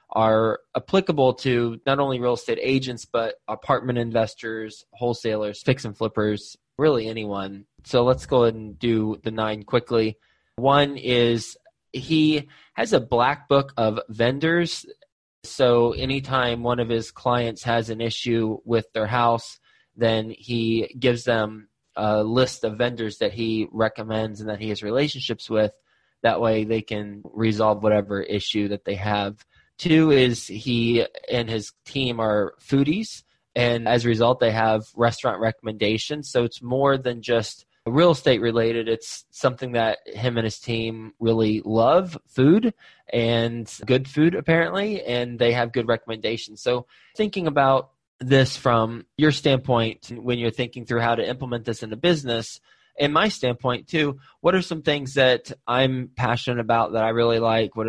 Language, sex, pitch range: English, male, 110-130 Hz